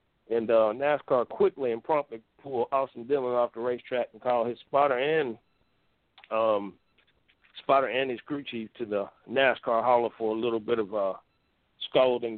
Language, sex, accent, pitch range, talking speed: English, male, American, 110-135 Hz, 165 wpm